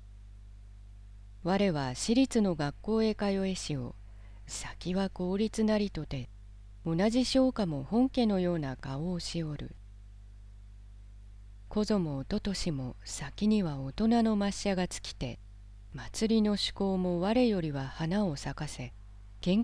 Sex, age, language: female, 40-59, Japanese